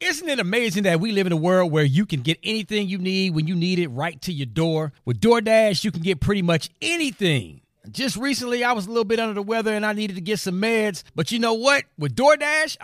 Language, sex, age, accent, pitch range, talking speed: English, male, 40-59, American, 180-265 Hz, 255 wpm